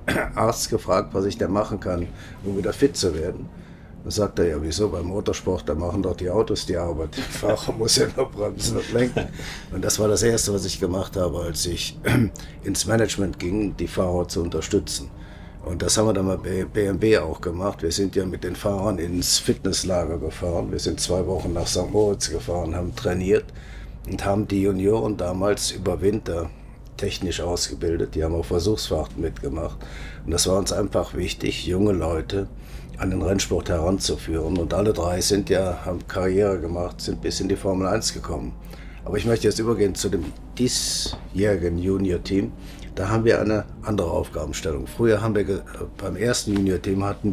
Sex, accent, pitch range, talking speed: male, German, 85-105 Hz, 185 wpm